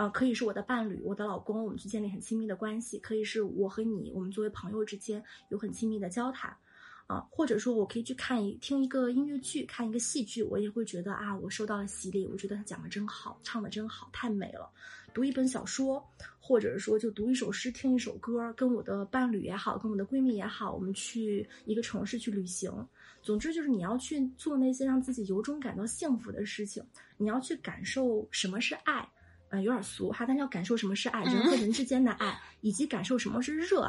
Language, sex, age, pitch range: Chinese, female, 20-39, 210-260 Hz